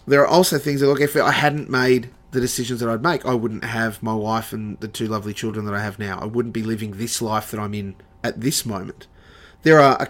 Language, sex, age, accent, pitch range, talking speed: English, male, 30-49, Australian, 110-135 Hz, 260 wpm